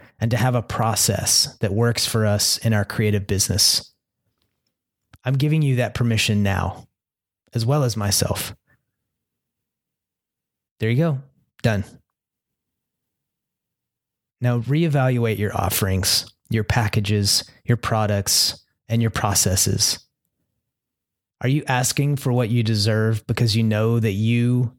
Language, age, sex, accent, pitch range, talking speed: English, 30-49, male, American, 105-125 Hz, 120 wpm